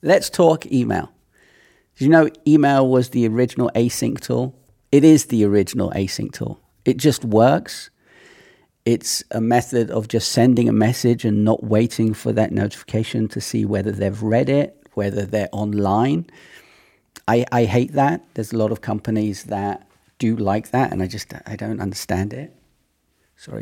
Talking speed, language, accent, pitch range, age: 165 wpm, English, British, 105-130 Hz, 40-59